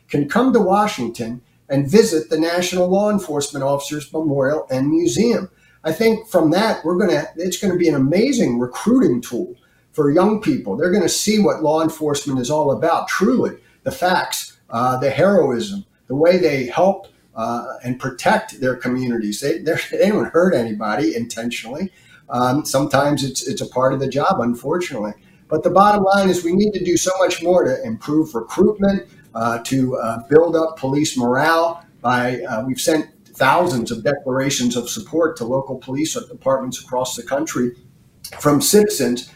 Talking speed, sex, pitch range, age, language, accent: 170 wpm, male, 125-180 Hz, 50-69, English, American